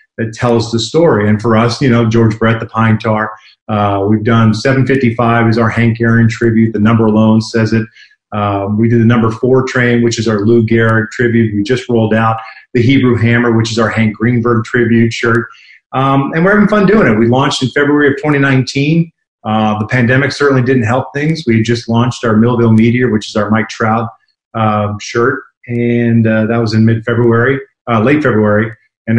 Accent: American